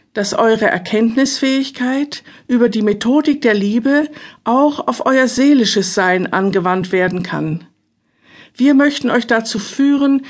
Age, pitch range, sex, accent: 50-69, 195-260 Hz, female, German